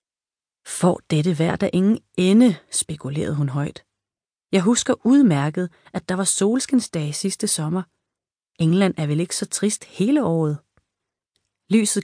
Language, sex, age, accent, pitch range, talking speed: Danish, female, 30-49, native, 155-195 Hz, 135 wpm